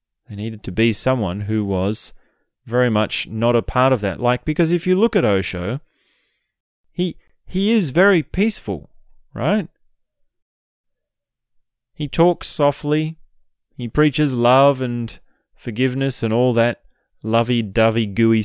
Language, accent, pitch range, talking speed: English, Australian, 105-140 Hz, 135 wpm